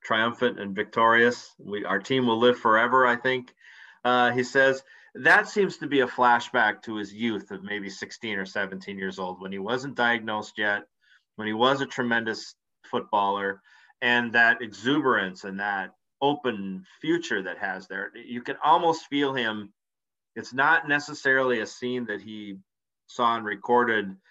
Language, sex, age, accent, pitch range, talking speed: English, male, 40-59, American, 105-130 Hz, 160 wpm